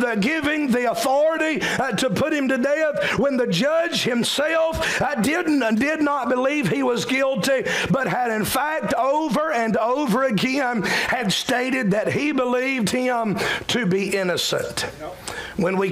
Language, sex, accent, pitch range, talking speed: English, male, American, 205-260 Hz, 160 wpm